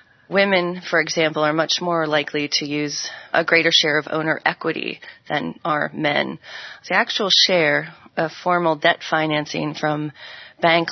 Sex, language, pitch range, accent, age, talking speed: female, English, 150-170 Hz, American, 30-49, 150 wpm